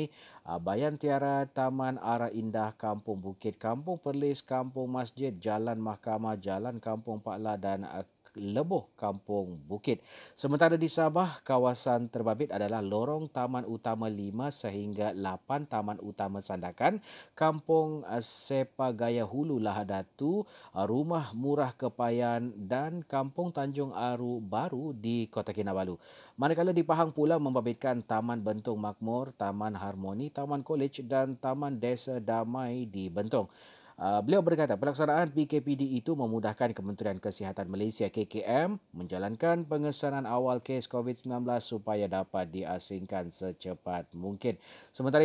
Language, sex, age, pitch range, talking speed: Malay, male, 40-59, 110-140 Hz, 120 wpm